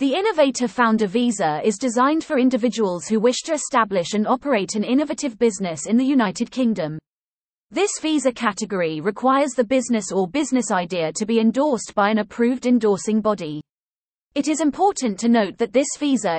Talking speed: 165 wpm